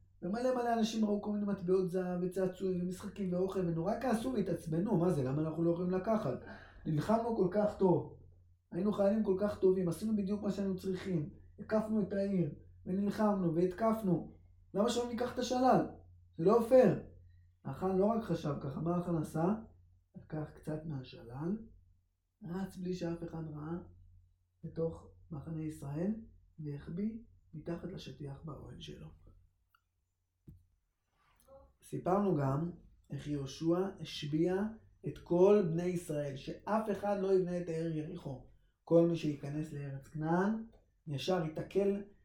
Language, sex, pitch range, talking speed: Hebrew, male, 145-195 Hz, 135 wpm